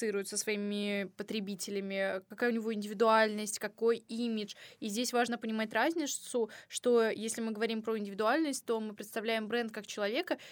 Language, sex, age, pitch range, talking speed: Russian, female, 20-39, 210-240 Hz, 150 wpm